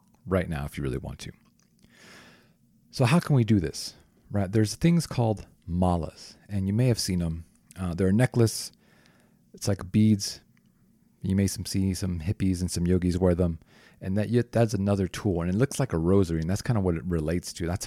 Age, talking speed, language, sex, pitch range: 40-59, 210 wpm, English, male, 90-115 Hz